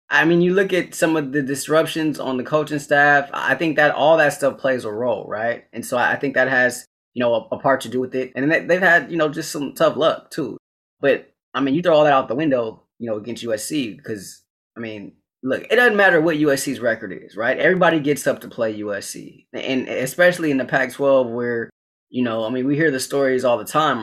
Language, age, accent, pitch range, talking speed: English, 20-39, American, 120-145 Hz, 240 wpm